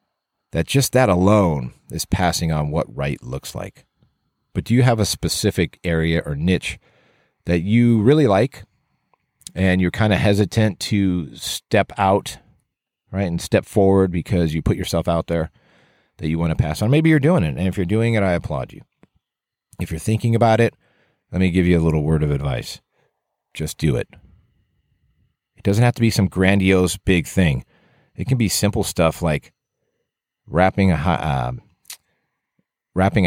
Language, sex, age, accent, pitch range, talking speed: English, male, 40-59, American, 80-105 Hz, 175 wpm